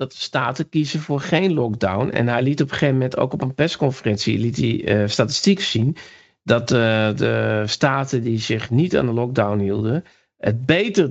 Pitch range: 115-155 Hz